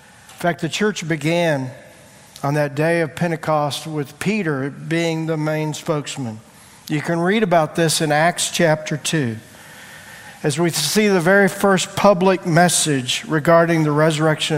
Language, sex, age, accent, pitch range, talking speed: English, male, 50-69, American, 155-185 Hz, 150 wpm